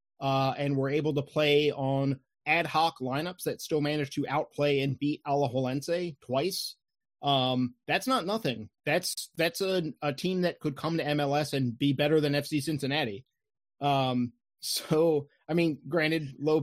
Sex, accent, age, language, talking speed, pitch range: male, American, 30-49, English, 160 wpm, 135-155 Hz